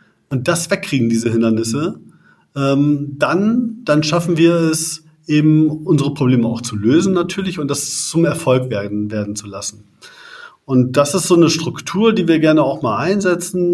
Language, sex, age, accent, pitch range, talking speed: German, male, 40-59, German, 125-165 Hz, 160 wpm